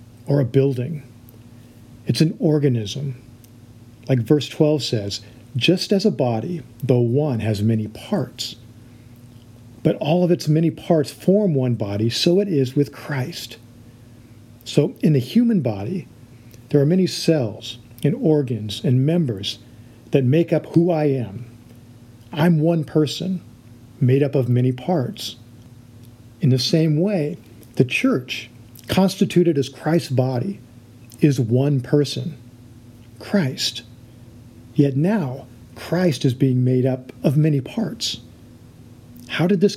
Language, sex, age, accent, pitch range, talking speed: English, male, 50-69, American, 120-150 Hz, 130 wpm